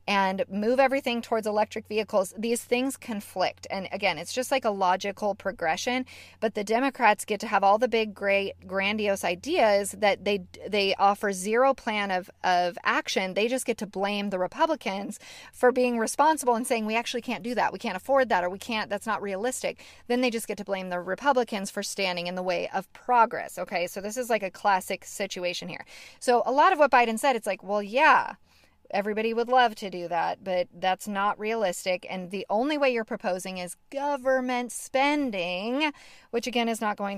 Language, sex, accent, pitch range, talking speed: English, female, American, 190-245 Hz, 200 wpm